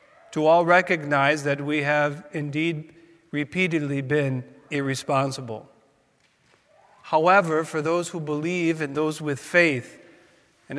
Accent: American